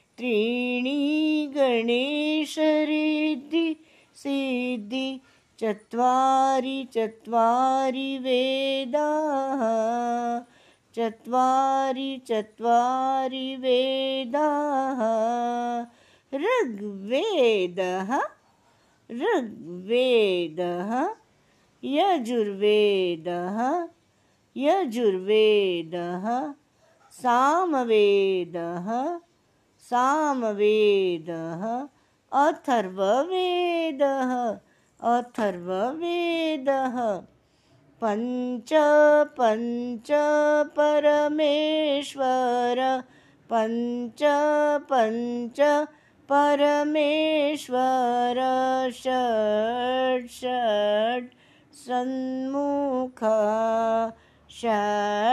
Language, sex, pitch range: Hindi, female, 225-285 Hz